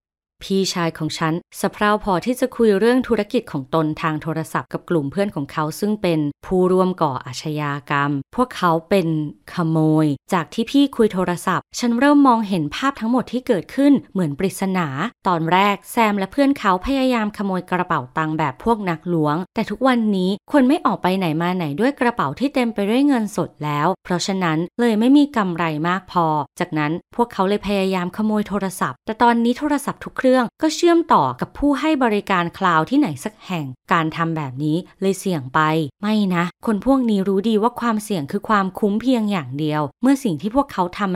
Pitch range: 165-230 Hz